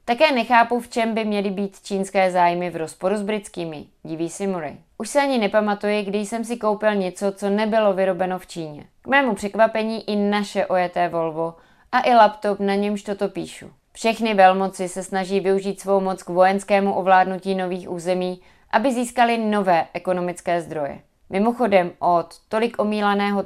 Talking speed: 165 wpm